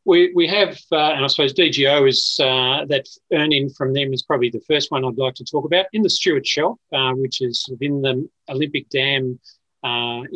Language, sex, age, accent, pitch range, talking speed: English, male, 40-59, Australian, 125-145 Hz, 210 wpm